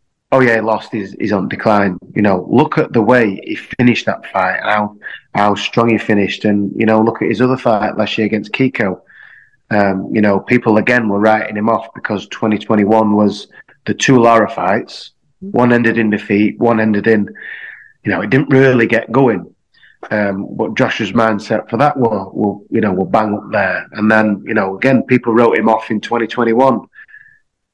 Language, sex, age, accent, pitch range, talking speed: English, male, 30-49, British, 105-125 Hz, 190 wpm